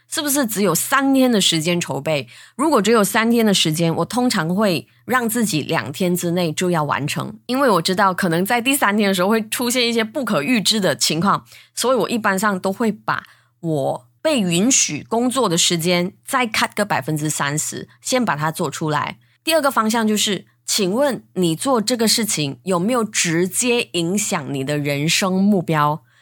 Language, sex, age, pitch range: Chinese, female, 20-39, 160-225 Hz